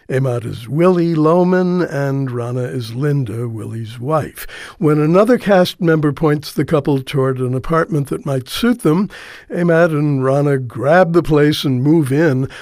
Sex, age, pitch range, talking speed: male, 60-79, 135-175 Hz, 155 wpm